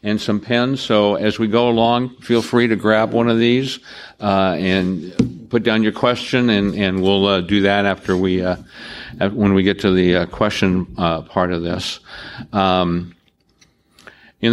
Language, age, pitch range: English, 60-79, 90-115 Hz